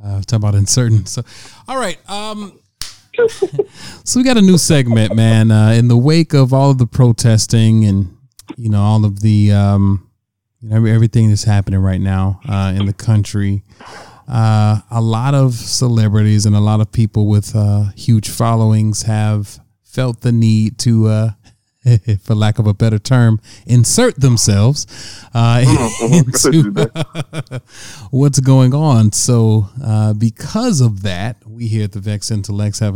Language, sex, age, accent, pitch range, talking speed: English, male, 30-49, American, 105-125 Hz, 155 wpm